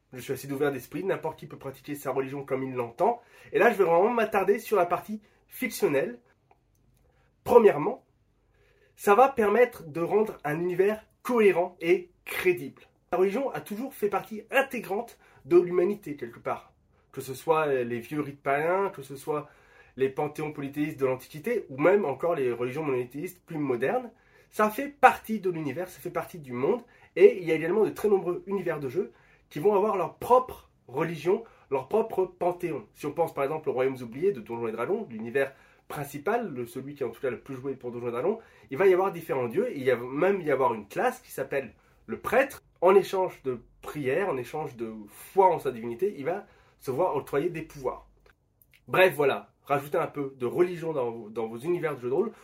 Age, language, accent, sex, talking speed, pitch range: 20-39, French, French, male, 205 wpm, 140-210 Hz